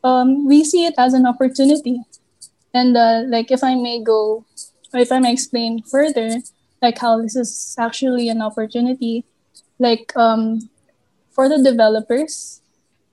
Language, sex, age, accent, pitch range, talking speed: English, female, 20-39, Filipino, 225-255 Hz, 140 wpm